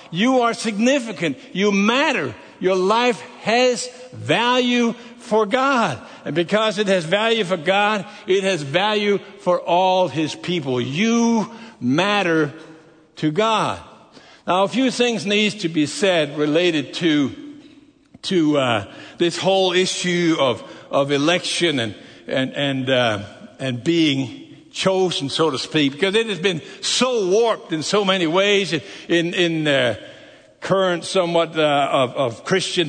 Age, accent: 60-79, American